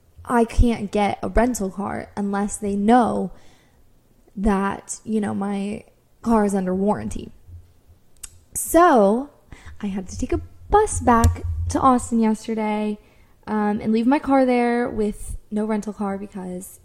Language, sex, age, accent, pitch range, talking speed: English, female, 10-29, American, 200-240 Hz, 140 wpm